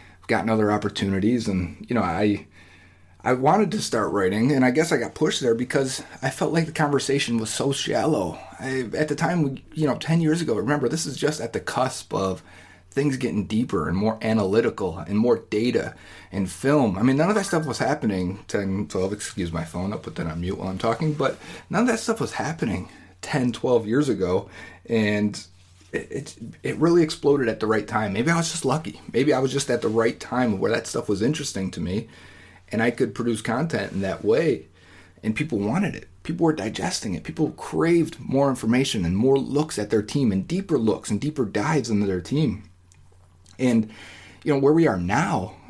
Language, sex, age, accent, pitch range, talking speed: English, male, 30-49, American, 95-140 Hz, 210 wpm